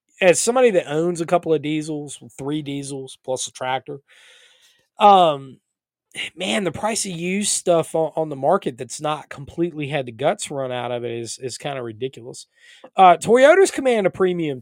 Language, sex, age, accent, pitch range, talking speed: English, male, 20-39, American, 130-180 Hz, 175 wpm